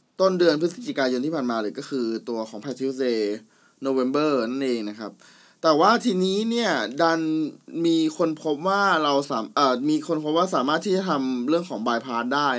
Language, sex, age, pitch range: Thai, male, 20-39, 130-180 Hz